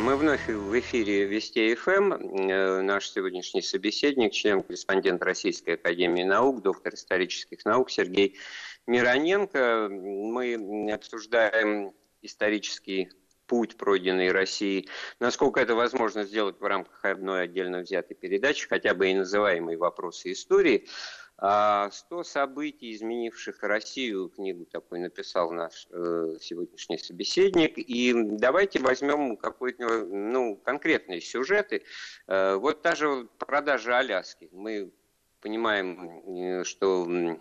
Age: 50-69